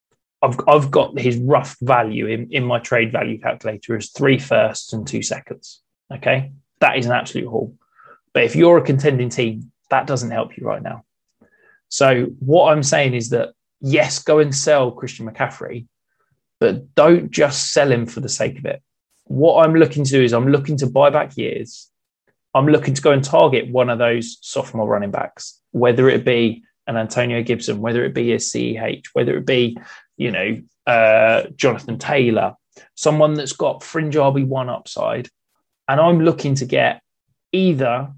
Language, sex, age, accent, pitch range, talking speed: English, male, 20-39, British, 115-145 Hz, 180 wpm